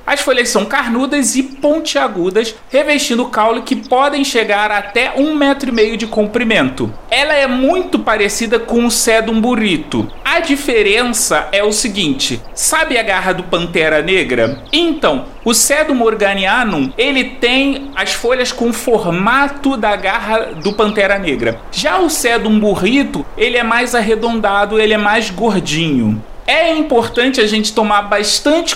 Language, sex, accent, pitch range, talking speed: Portuguese, male, Brazilian, 200-260 Hz, 150 wpm